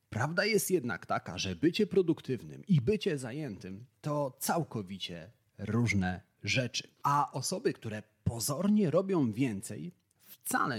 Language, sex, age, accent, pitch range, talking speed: Polish, male, 30-49, native, 110-155 Hz, 115 wpm